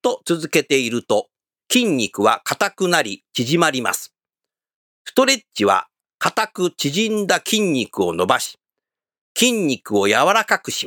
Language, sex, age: Japanese, male, 50-69